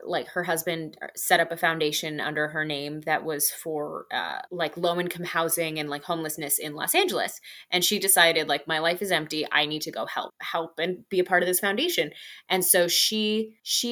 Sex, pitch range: female, 170-195 Hz